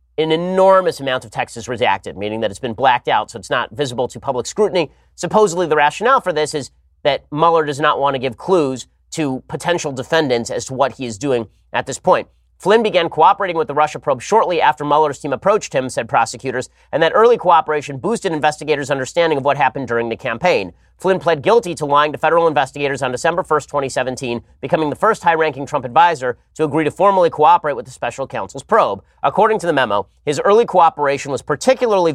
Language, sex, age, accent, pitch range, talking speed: English, male, 30-49, American, 130-170 Hz, 205 wpm